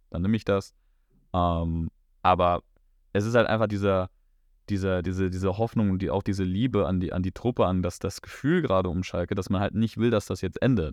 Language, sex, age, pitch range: German, male, 20-39, 90-100 Hz